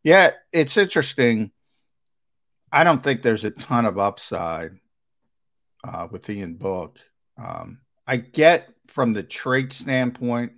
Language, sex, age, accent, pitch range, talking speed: English, male, 50-69, American, 105-130 Hz, 125 wpm